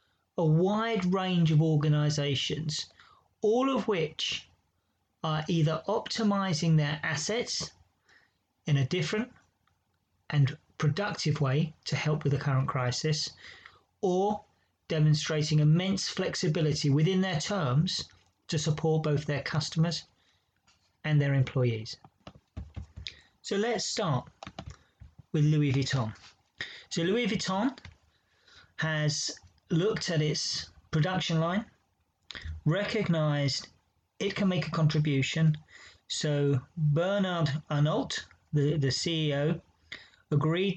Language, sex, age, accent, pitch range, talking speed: English, male, 40-59, British, 140-170 Hz, 100 wpm